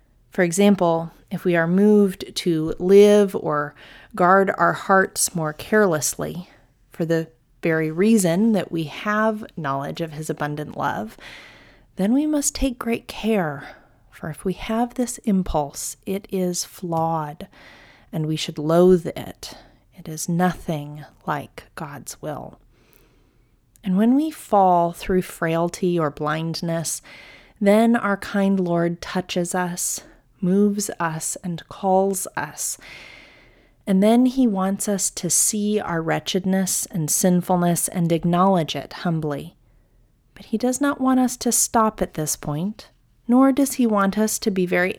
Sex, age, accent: female, 30-49, American